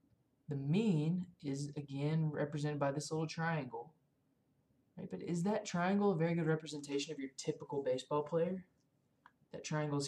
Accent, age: American, 20-39